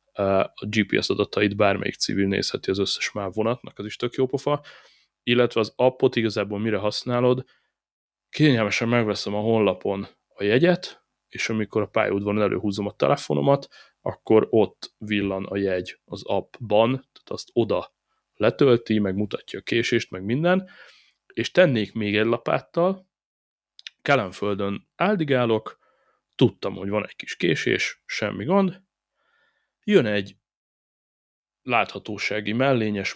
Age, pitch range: 20-39, 105-140 Hz